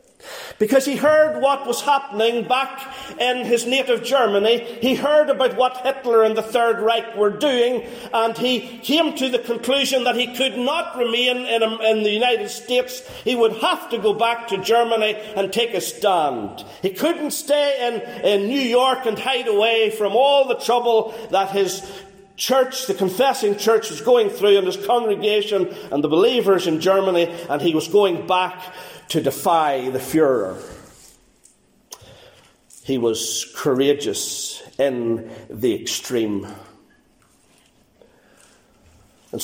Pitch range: 170-250 Hz